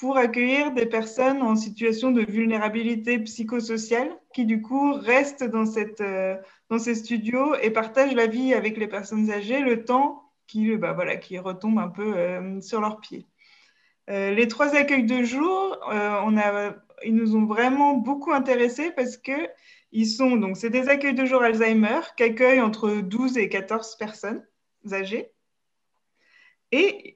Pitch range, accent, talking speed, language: 215-270 Hz, French, 165 wpm, French